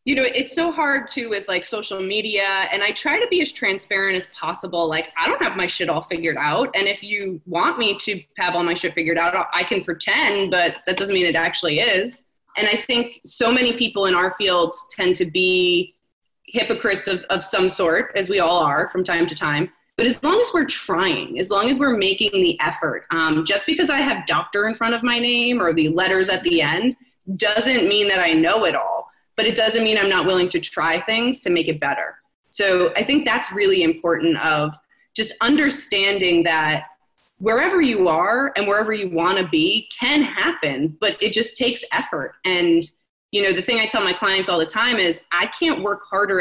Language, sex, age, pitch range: English, female, 20-39, 175-240 Hz